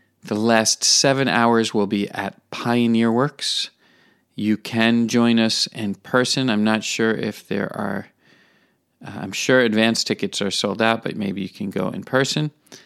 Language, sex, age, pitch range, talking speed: English, male, 40-59, 100-120 Hz, 170 wpm